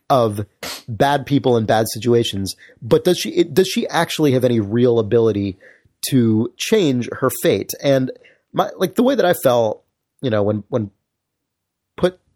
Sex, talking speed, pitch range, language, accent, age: male, 165 wpm, 105-135 Hz, English, American, 30-49